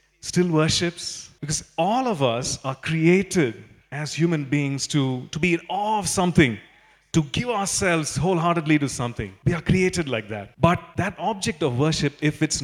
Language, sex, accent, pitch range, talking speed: English, male, Indian, 130-175 Hz, 170 wpm